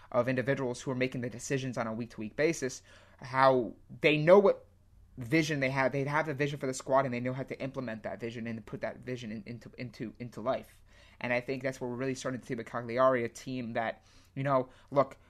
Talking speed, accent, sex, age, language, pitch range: 245 wpm, American, male, 30-49, English, 115-135 Hz